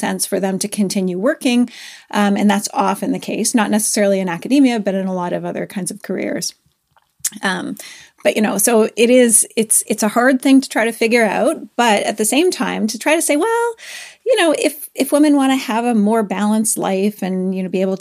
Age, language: 30-49, English